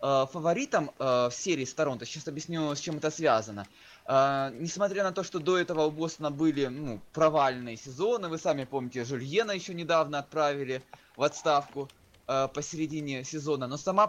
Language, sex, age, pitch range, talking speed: Russian, male, 20-39, 130-165 Hz, 155 wpm